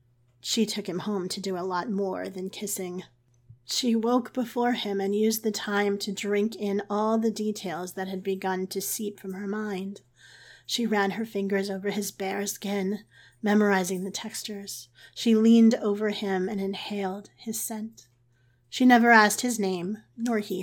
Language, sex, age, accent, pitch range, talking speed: English, female, 30-49, American, 185-220 Hz, 170 wpm